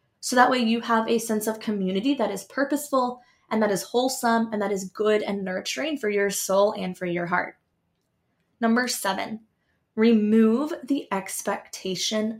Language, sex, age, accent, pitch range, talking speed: English, female, 20-39, American, 195-240 Hz, 165 wpm